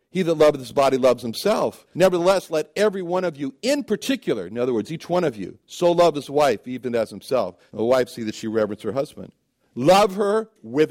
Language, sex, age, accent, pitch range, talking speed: English, male, 60-79, American, 130-180 Hz, 220 wpm